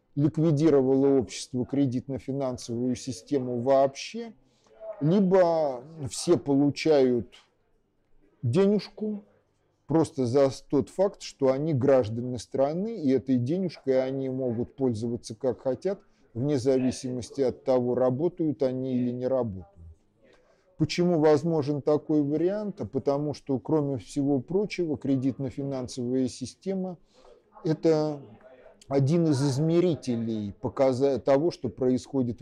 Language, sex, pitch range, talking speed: Russian, male, 125-150 Hz, 95 wpm